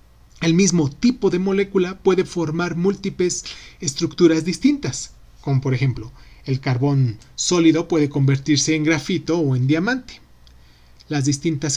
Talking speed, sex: 125 wpm, male